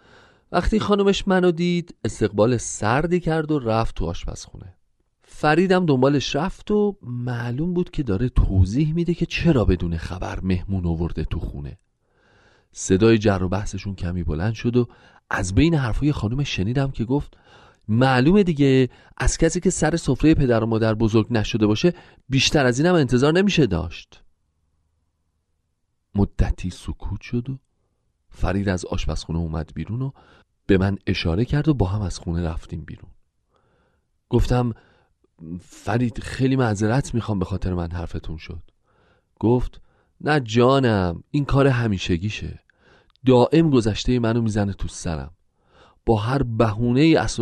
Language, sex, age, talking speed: Persian, male, 40-59, 140 wpm